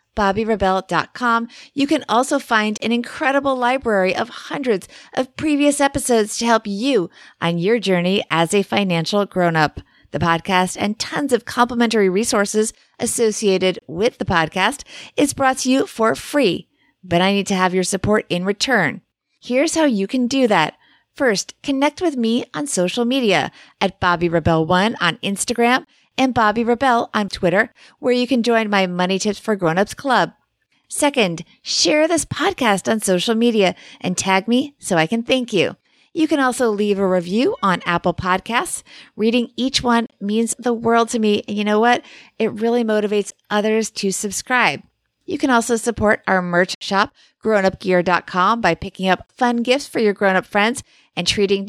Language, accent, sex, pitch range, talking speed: English, American, female, 190-245 Hz, 165 wpm